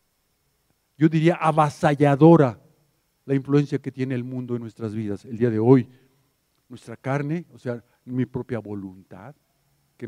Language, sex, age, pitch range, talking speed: Spanish, male, 50-69, 125-170 Hz, 145 wpm